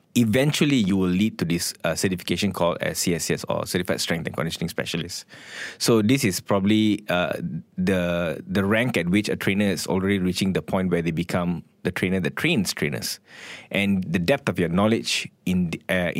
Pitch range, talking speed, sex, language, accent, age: 90-110 Hz, 190 wpm, male, English, Malaysian, 20-39